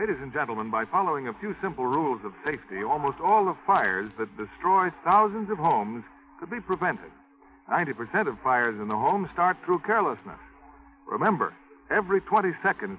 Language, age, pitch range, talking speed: English, 60-79, 150-210 Hz, 170 wpm